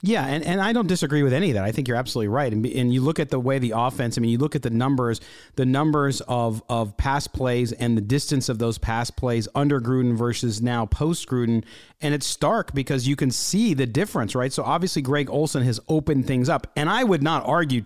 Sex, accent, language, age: male, American, English, 40-59